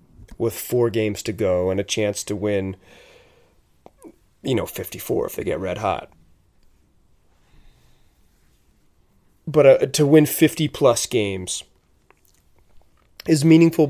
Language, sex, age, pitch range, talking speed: English, male, 30-49, 105-140 Hz, 110 wpm